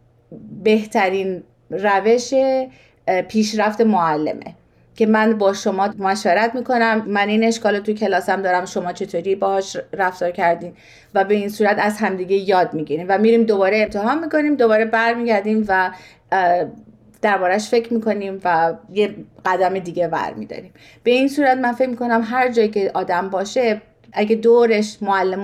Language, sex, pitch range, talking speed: Persian, female, 195-235 Hz, 145 wpm